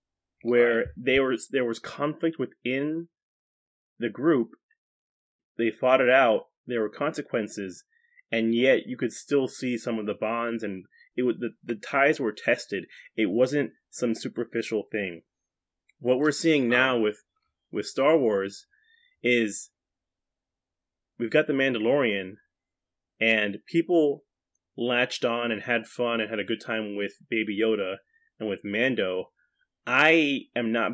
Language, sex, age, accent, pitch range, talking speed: English, male, 20-39, American, 110-155 Hz, 140 wpm